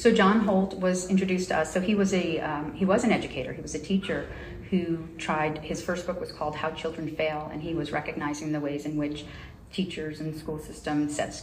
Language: English